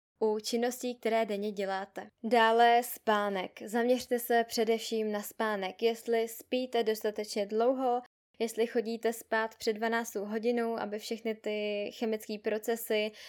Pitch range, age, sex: 205-240 Hz, 10-29, female